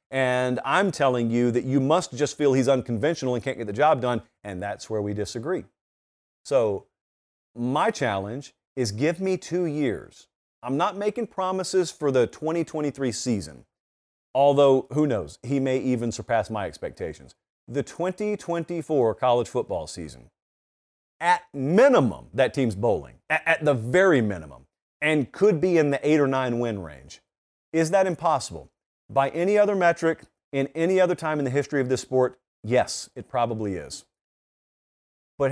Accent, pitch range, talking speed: American, 120-175 Hz, 160 wpm